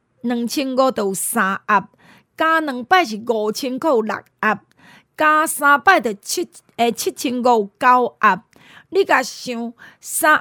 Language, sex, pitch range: Chinese, female, 215-290 Hz